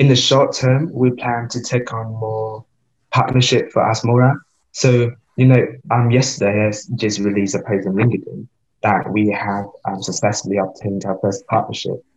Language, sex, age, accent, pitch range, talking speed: English, male, 20-39, British, 100-120 Hz, 170 wpm